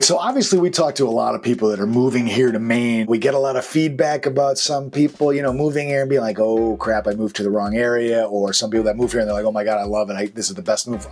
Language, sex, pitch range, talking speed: English, male, 105-150 Hz, 320 wpm